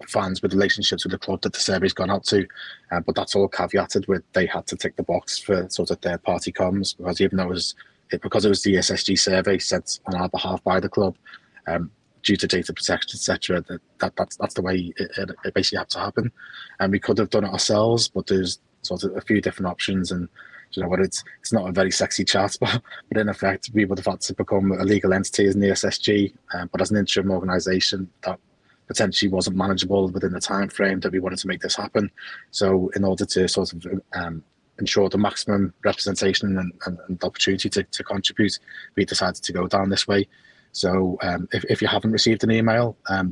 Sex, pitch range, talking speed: male, 95-100 Hz, 225 wpm